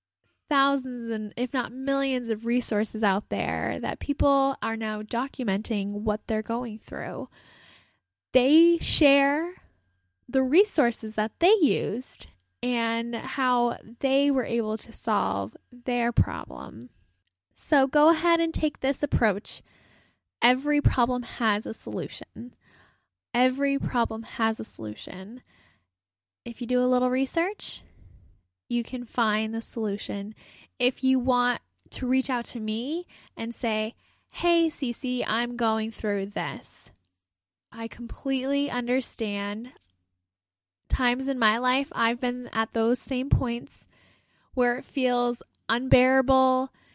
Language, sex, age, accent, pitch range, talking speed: English, female, 10-29, American, 215-260 Hz, 120 wpm